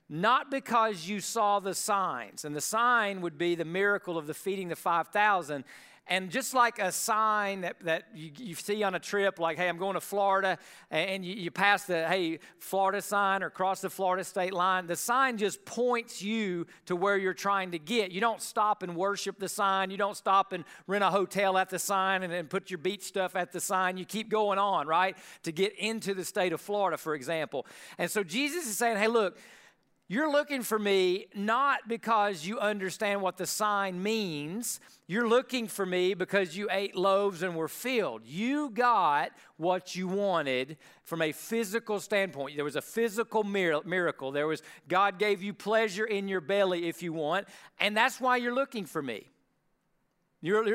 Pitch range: 180-220 Hz